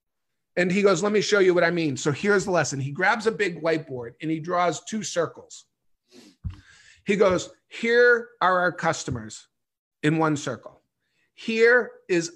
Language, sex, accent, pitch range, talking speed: English, male, American, 160-205 Hz, 170 wpm